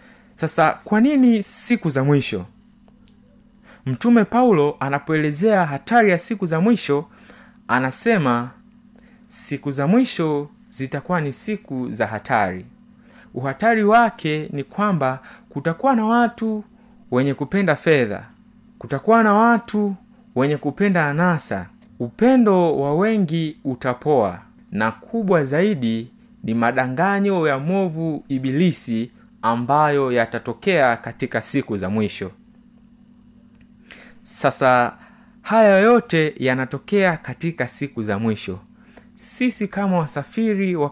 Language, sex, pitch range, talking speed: Swahili, male, 140-225 Hz, 100 wpm